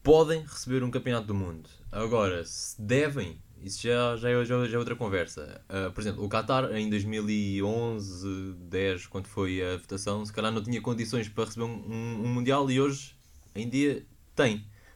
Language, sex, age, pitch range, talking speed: Portuguese, male, 20-39, 100-130 Hz, 175 wpm